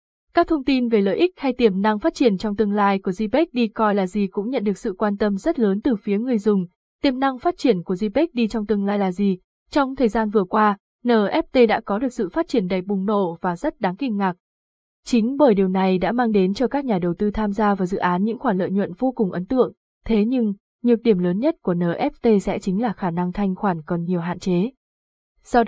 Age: 20-39